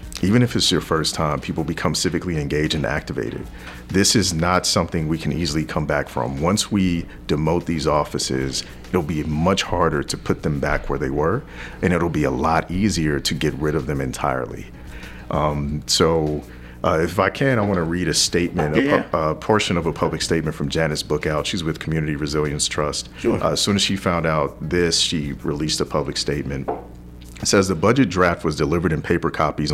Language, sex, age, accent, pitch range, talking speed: English, male, 40-59, American, 75-90 Hz, 205 wpm